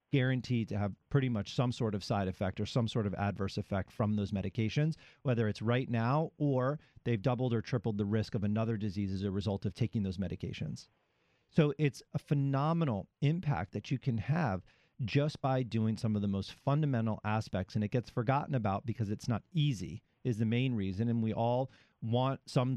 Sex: male